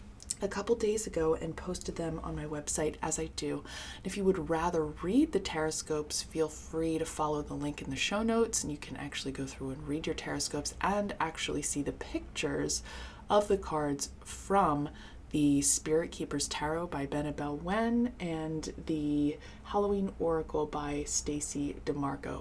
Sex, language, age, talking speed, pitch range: female, English, 20-39, 170 wpm, 145-195 Hz